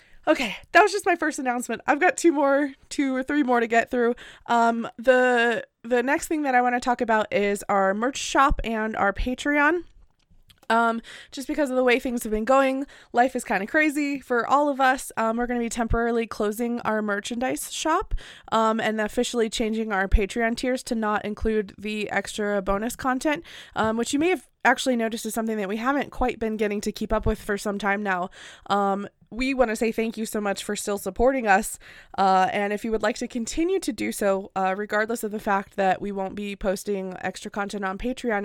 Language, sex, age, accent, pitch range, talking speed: English, female, 20-39, American, 205-250 Hz, 215 wpm